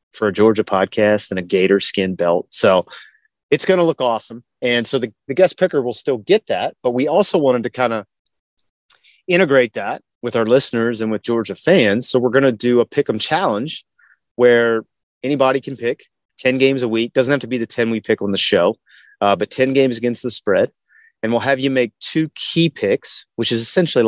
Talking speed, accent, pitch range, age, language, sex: 215 wpm, American, 105-125 Hz, 30-49, English, male